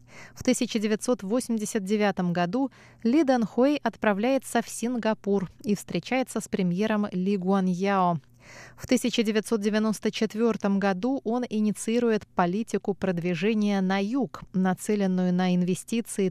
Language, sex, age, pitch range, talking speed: Russian, female, 20-39, 185-230 Hz, 100 wpm